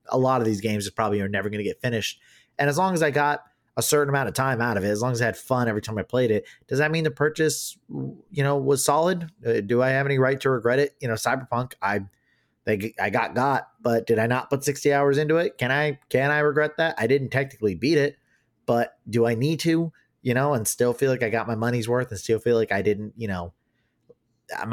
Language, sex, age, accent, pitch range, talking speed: English, male, 30-49, American, 105-135 Hz, 260 wpm